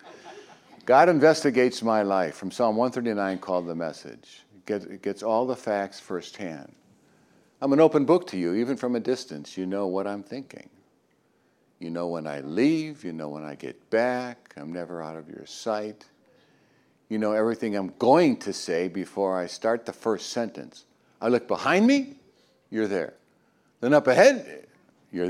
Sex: male